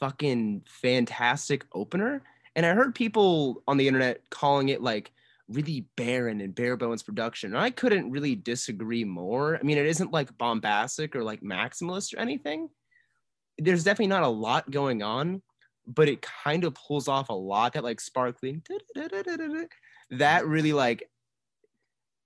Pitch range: 120-165 Hz